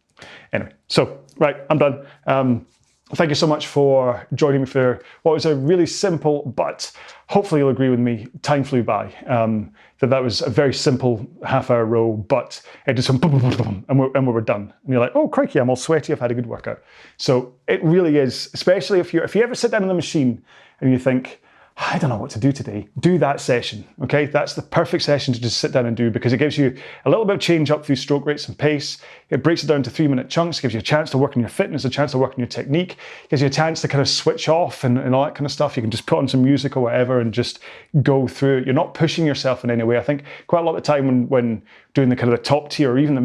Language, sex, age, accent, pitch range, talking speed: English, male, 30-49, British, 125-150 Hz, 280 wpm